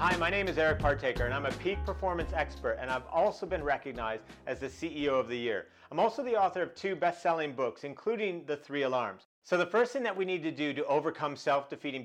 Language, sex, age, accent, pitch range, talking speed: English, male, 40-59, American, 135-175 Hz, 235 wpm